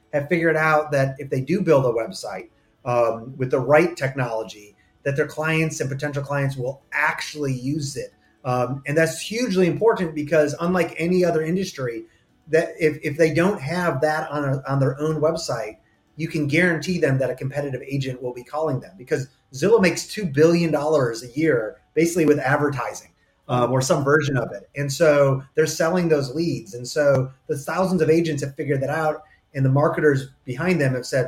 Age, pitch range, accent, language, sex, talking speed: 30-49, 130-160 Hz, American, English, male, 190 wpm